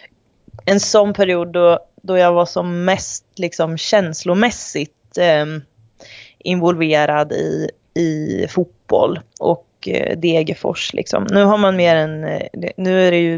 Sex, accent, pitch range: female, native, 160-210 Hz